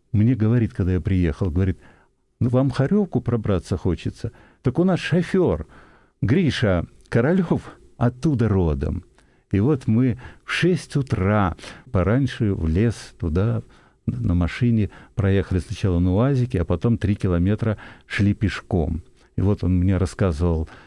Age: 60-79